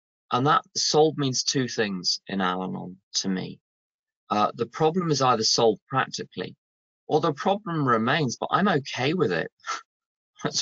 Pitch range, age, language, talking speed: 100-135 Hz, 20-39, English, 155 wpm